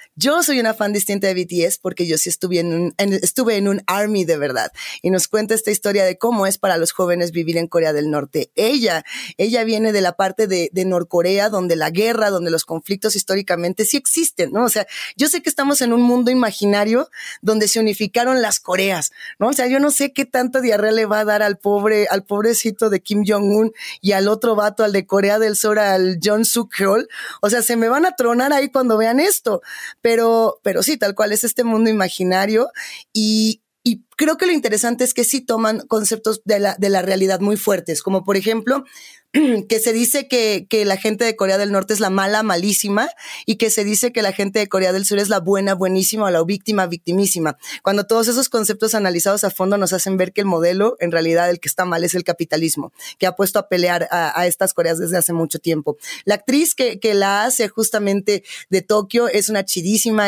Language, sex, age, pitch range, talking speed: Spanish, female, 20-39, 190-225 Hz, 225 wpm